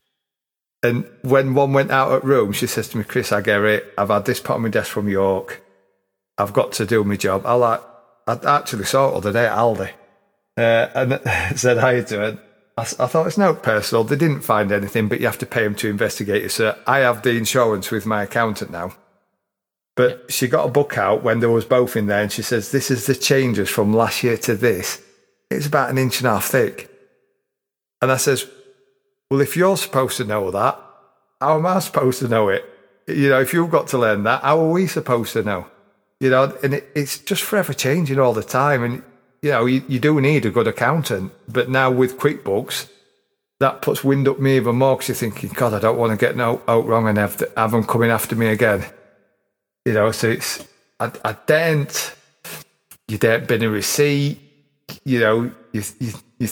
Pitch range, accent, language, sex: 110-140 Hz, British, English, male